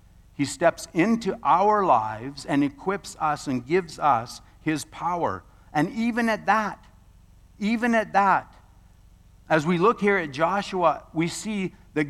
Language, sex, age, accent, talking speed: English, male, 50-69, American, 145 wpm